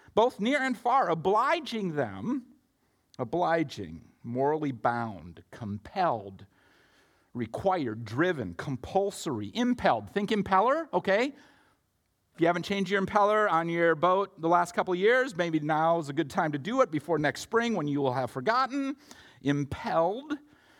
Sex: male